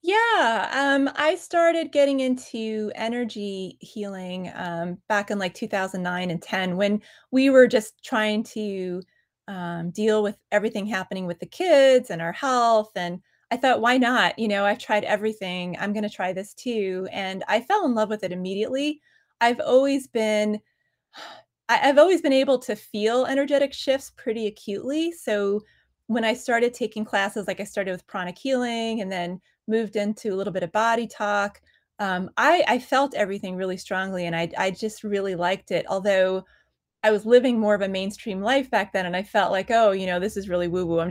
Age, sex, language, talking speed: 20-39, female, English, 185 wpm